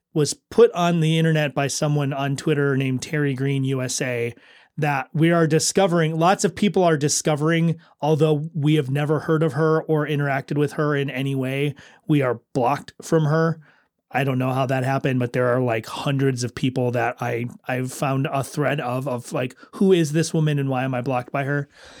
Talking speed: 200 wpm